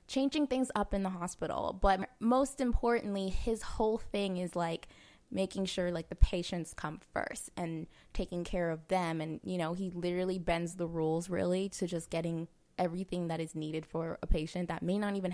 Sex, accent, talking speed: female, American, 190 wpm